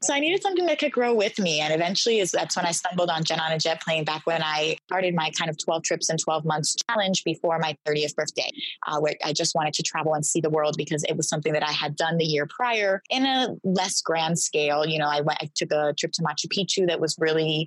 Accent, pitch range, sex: American, 150-165 Hz, female